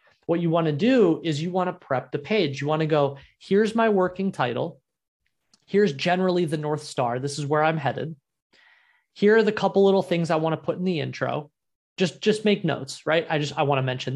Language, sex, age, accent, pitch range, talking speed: English, male, 20-39, American, 145-185 Hz, 230 wpm